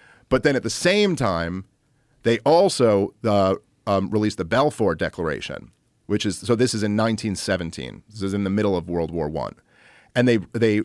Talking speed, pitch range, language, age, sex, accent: 190 wpm, 105-135 Hz, English, 40-59, male, American